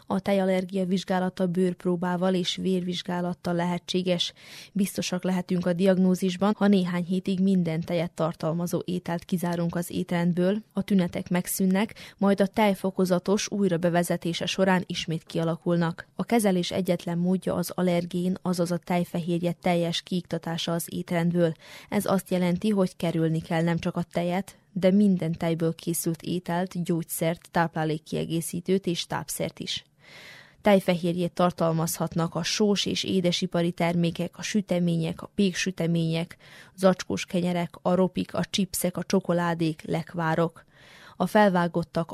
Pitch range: 170-185 Hz